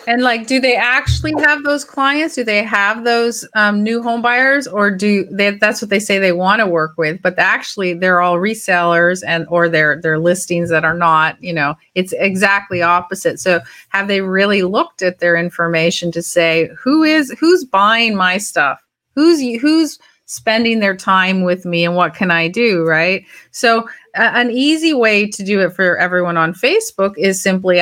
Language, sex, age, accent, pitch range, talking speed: English, female, 30-49, American, 180-235 Hz, 190 wpm